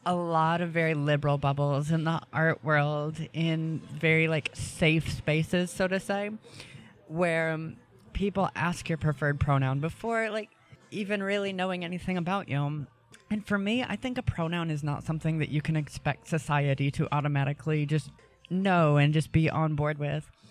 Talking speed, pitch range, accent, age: 170 wpm, 145-175 Hz, American, 20-39